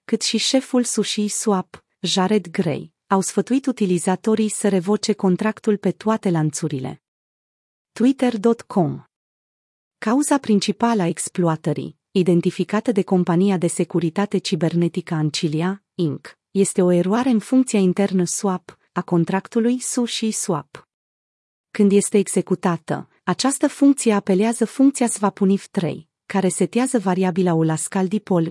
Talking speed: 105 wpm